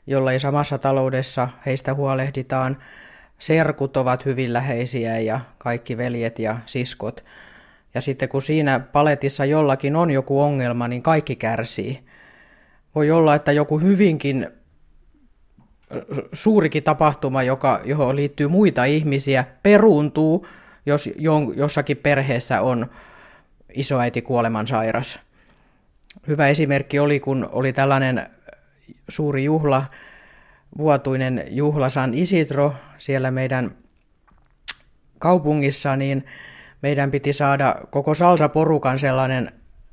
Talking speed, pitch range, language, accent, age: 100 wpm, 130-150 Hz, Finnish, native, 30-49